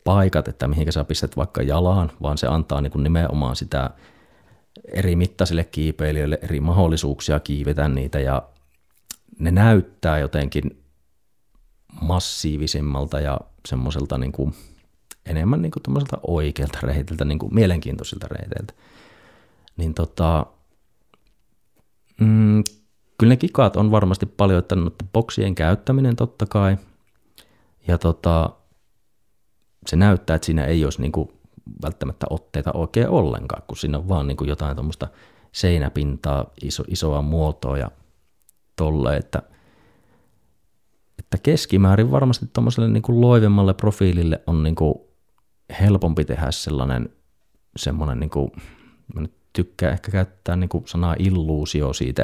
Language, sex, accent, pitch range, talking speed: Finnish, male, native, 75-100 Hz, 115 wpm